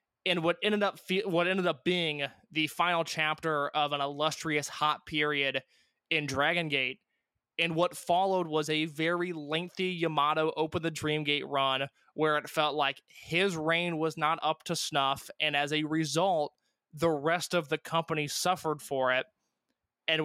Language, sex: English, male